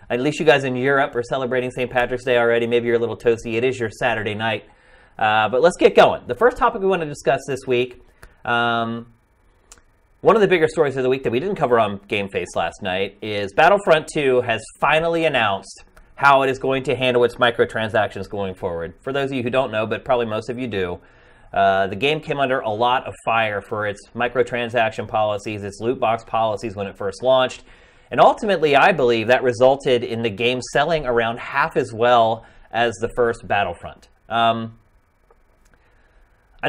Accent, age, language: American, 30-49, English